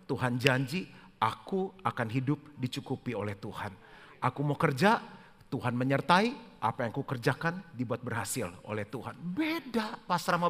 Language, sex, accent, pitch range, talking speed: Indonesian, male, native, 135-180 Hz, 130 wpm